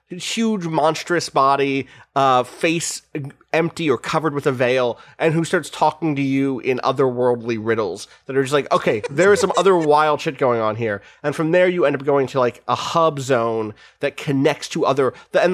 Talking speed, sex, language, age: 195 wpm, male, English, 30-49